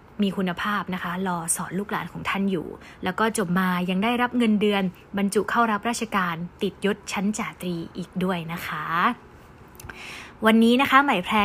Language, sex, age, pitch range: Thai, female, 20-39, 195-245 Hz